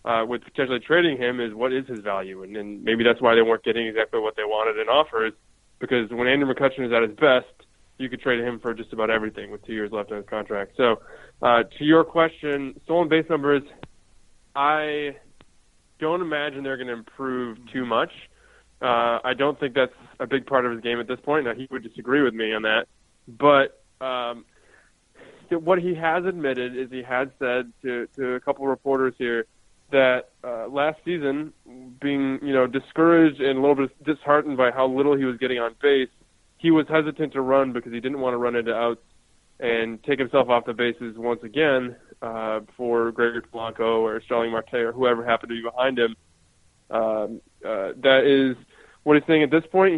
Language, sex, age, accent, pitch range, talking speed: English, male, 20-39, American, 115-140 Hz, 200 wpm